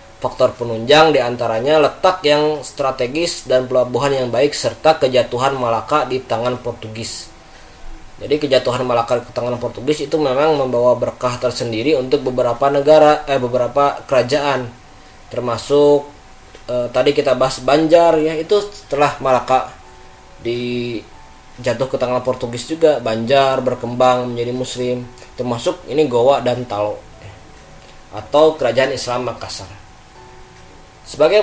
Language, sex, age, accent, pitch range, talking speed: Indonesian, male, 20-39, native, 120-145 Hz, 120 wpm